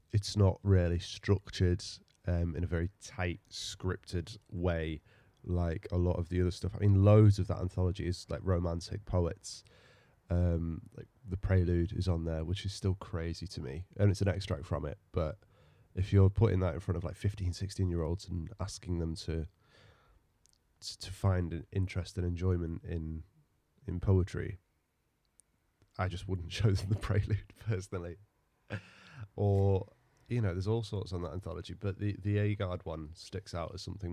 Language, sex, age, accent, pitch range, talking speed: English, male, 20-39, British, 85-100 Hz, 175 wpm